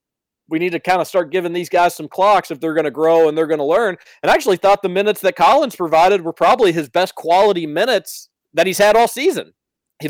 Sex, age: male, 40-59